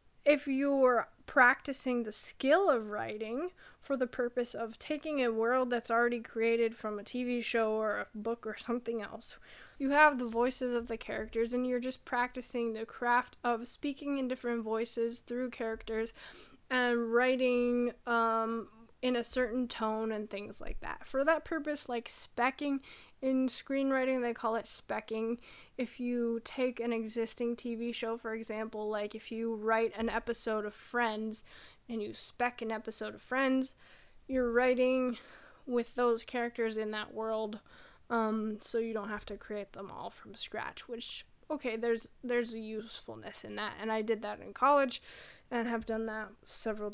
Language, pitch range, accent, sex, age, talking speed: English, 225-255 Hz, American, female, 10-29, 165 wpm